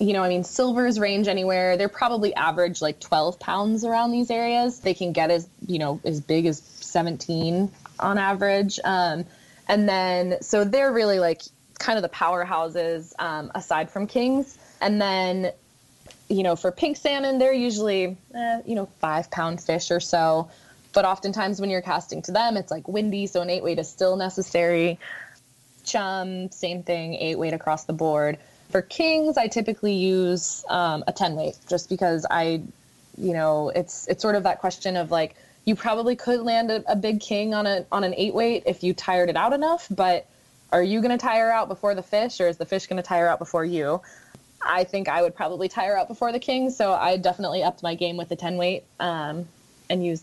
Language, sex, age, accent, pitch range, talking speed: English, female, 20-39, American, 170-205 Hz, 200 wpm